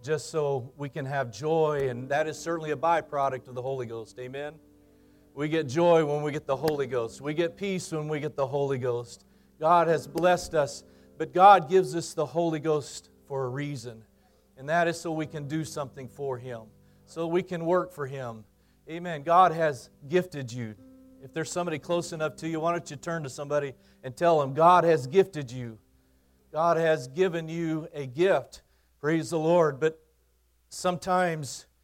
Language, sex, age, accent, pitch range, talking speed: English, male, 40-59, American, 125-165 Hz, 190 wpm